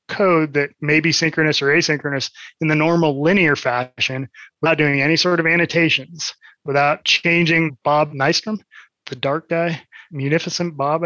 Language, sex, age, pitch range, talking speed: English, male, 20-39, 140-170 Hz, 145 wpm